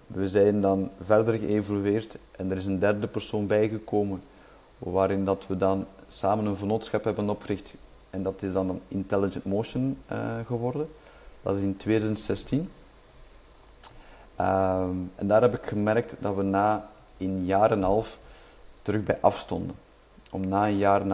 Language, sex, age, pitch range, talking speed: Dutch, male, 30-49, 95-110 Hz, 160 wpm